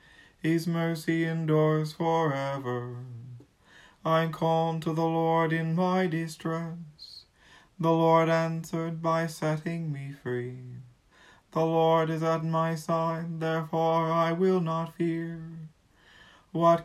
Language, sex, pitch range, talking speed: English, male, 155-165 Hz, 110 wpm